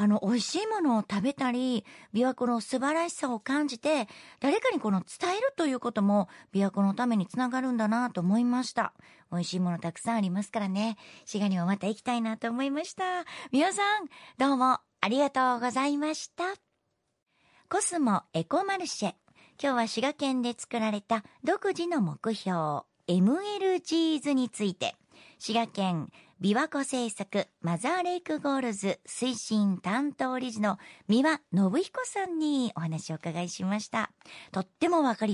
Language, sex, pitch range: Japanese, male, 205-330 Hz